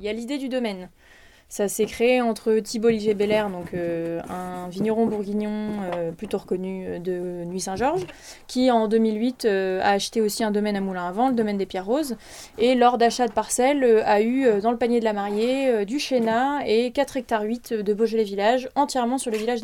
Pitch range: 205-235 Hz